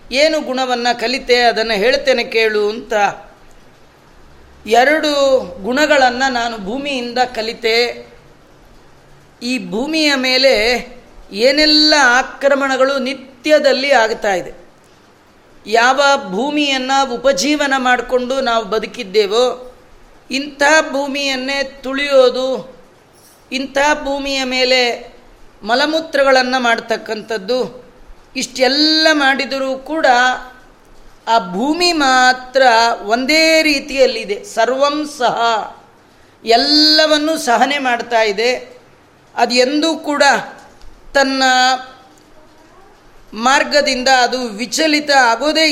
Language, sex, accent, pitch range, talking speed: Kannada, female, native, 240-285 Hz, 70 wpm